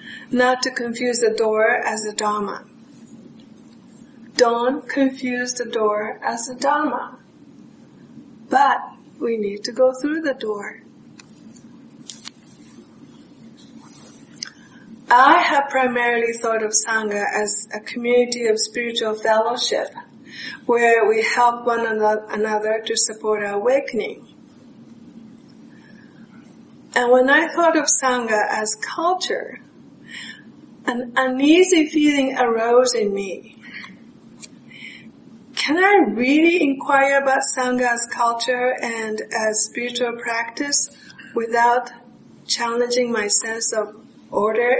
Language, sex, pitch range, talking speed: English, female, 225-265 Hz, 100 wpm